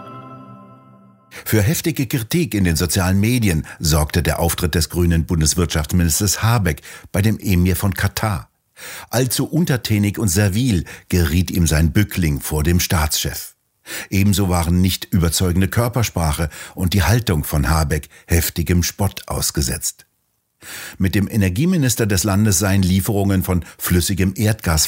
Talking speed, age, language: 130 wpm, 60-79, German